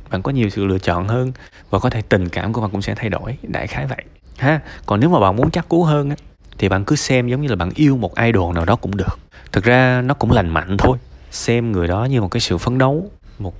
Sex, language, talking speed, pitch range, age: male, Vietnamese, 275 wpm, 95-130 Hz, 20-39